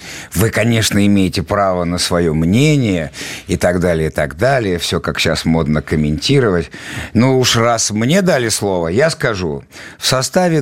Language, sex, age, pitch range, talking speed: Russian, male, 50-69, 110-160 Hz, 160 wpm